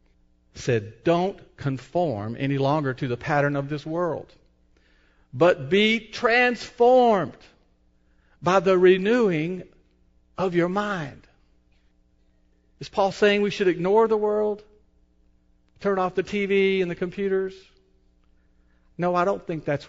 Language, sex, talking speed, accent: English, male, 120 wpm, American